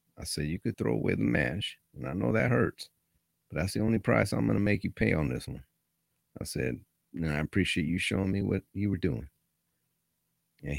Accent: American